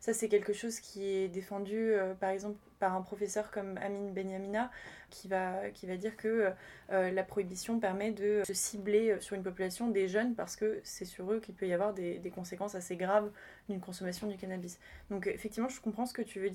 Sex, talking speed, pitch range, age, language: female, 220 wpm, 185-215 Hz, 20-39, English